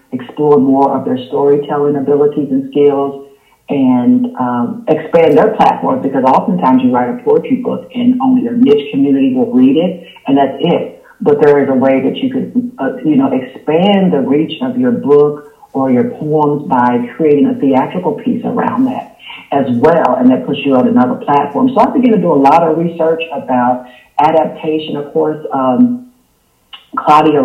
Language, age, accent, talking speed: English, 50-69, American, 175 wpm